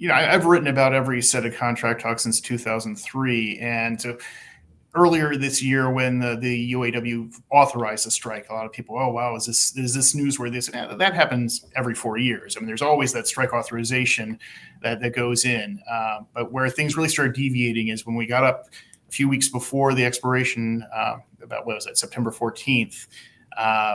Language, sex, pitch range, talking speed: English, male, 115-130 Hz, 195 wpm